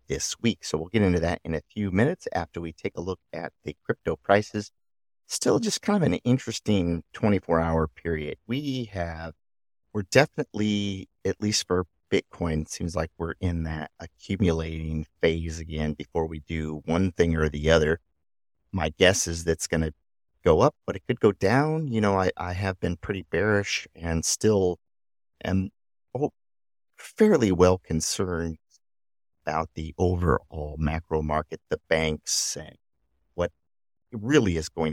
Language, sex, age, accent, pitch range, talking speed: English, male, 50-69, American, 75-95 Hz, 155 wpm